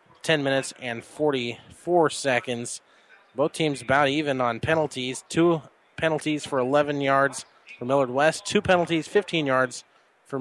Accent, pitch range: American, 125-160 Hz